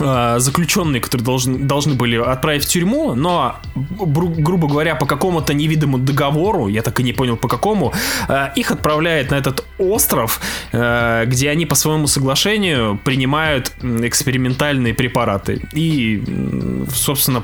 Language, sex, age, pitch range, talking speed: Russian, male, 20-39, 120-160 Hz, 130 wpm